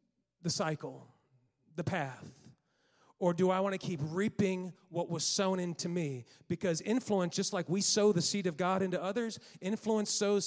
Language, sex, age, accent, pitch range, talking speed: English, male, 40-59, American, 175-230 Hz, 170 wpm